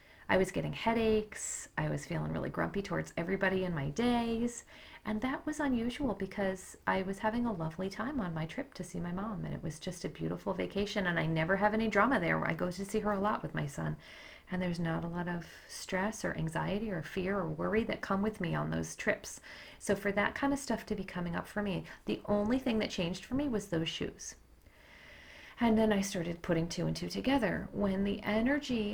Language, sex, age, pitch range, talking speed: English, female, 40-59, 170-220 Hz, 230 wpm